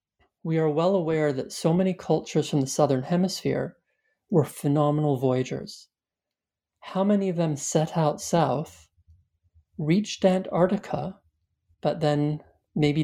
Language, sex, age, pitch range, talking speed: English, male, 40-59, 145-180 Hz, 125 wpm